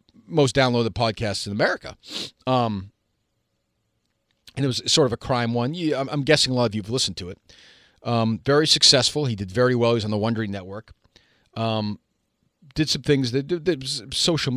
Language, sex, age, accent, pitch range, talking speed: English, male, 40-59, American, 105-140 Hz, 175 wpm